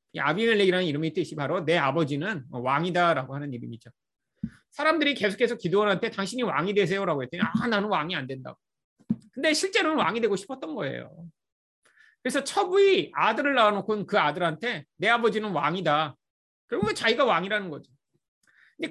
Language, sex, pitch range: Korean, male, 155-260 Hz